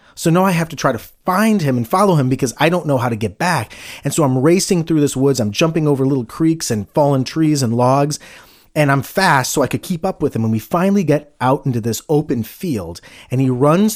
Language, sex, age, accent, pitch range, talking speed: English, male, 30-49, American, 110-160 Hz, 255 wpm